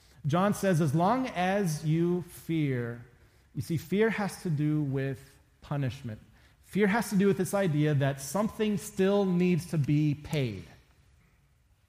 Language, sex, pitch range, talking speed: English, male, 120-170 Hz, 145 wpm